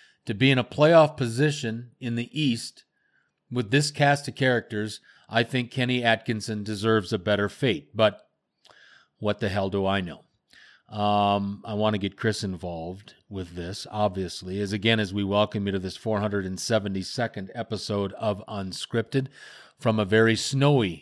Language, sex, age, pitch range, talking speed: English, male, 40-59, 100-125 Hz, 155 wpm